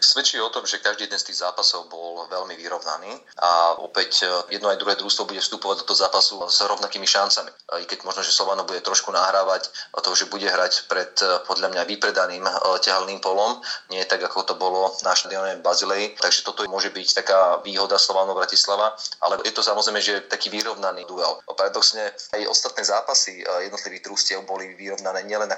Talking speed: 185 wpm